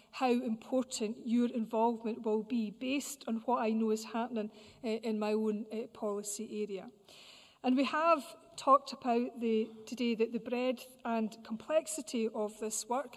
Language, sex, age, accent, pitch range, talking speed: English, female, 40-59, British, 220-250 Hz, 160 wpm